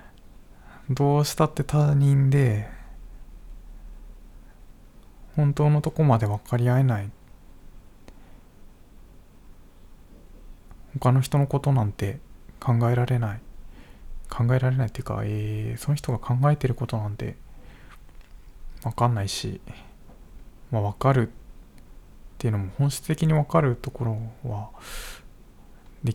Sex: male